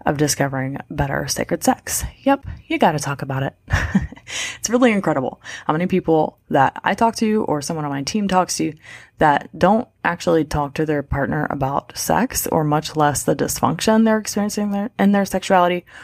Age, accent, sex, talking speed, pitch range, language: 20-39, American, female, 180 wpm, 155-210 Hz, English